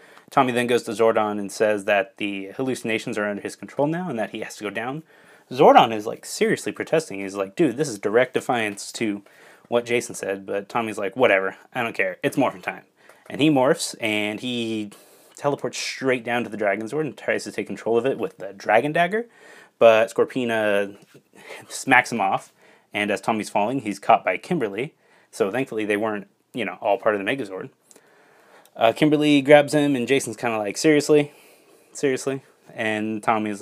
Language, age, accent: English, 30-49, American